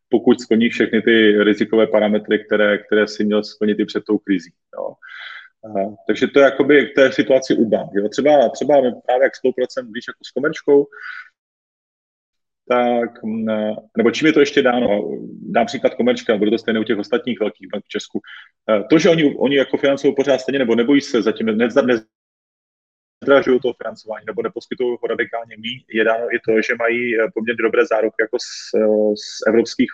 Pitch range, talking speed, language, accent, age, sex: 105-125 Hz, 175 wpm, Czech, native, 30-49, male